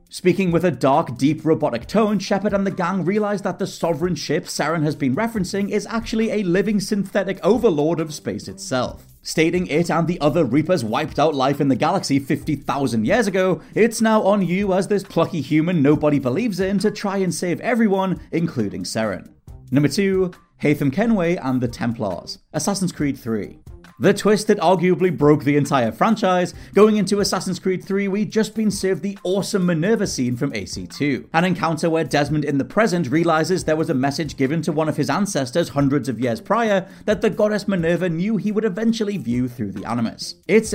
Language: English